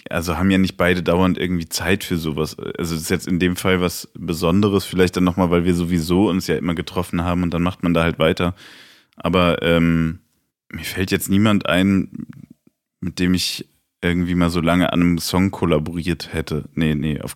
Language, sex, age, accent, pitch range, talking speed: German, male, 20-39, German, 85-95 Hz, 200 wpm